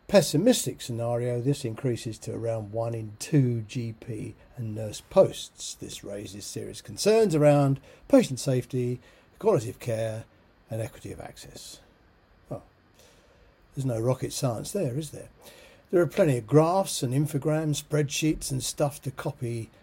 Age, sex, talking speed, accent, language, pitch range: 50-69, male, 140 wpm, British, English, 115-145 Hz